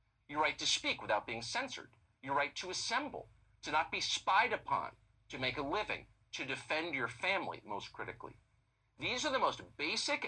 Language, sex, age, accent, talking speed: English, male, 50-69, American, 180 wpm